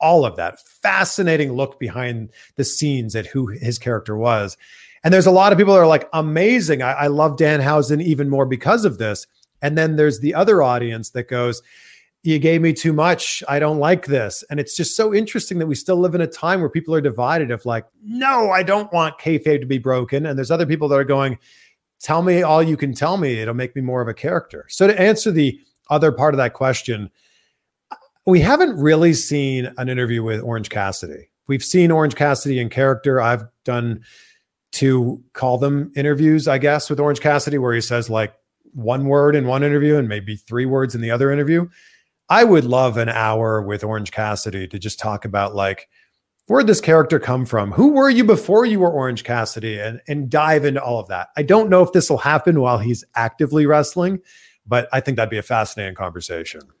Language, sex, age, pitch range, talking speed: English, male, 40-59, 120-160 Hz, 210 wpm